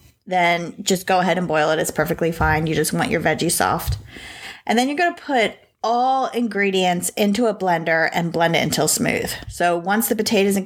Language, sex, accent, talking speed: English, female, American, 210 wpm